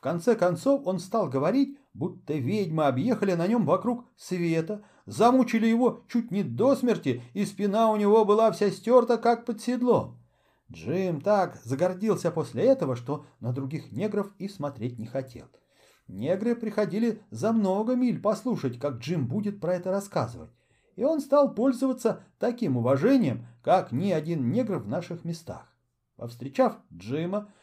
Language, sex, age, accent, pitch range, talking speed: Russian, male, 40-59, native, 135-220 Hz, 150 wpm